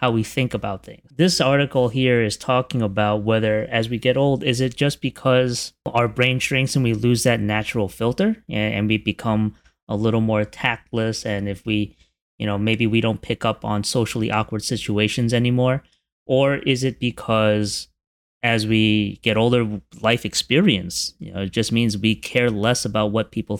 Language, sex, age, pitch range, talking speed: English, male, 20-39, 100-120 Hz, 180 wpm